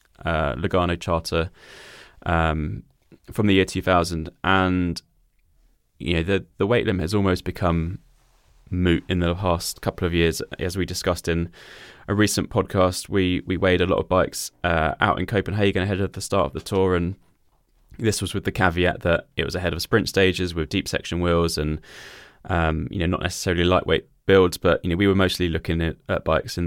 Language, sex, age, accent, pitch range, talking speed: English, male, 10-29, British, 85-95 Hz, 190 wpm